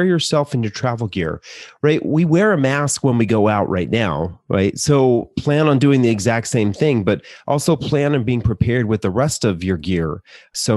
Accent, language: American, English